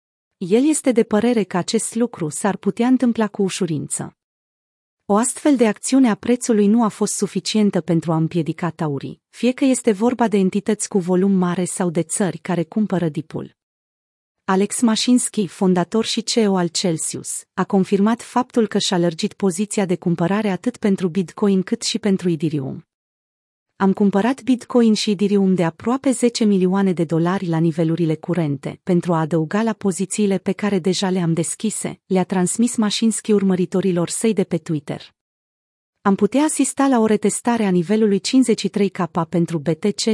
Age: 30-49